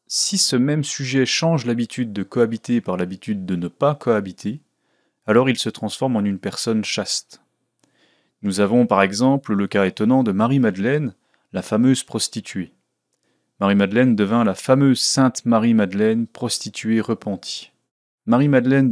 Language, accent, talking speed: French, French, 135 wpm